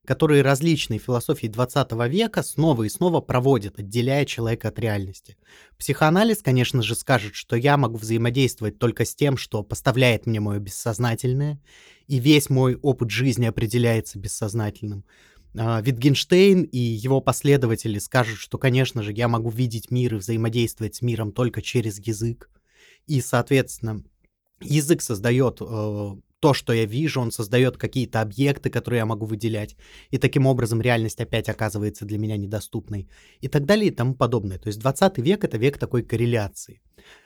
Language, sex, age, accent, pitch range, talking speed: Russian, male, 20-39, native, 115-140 Hz, 155 wpm